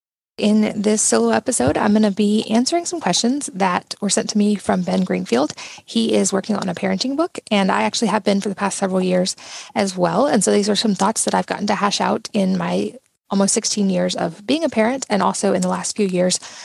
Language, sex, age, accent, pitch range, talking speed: English, female, 20-39, American, 190-220 Hz, 240 wpm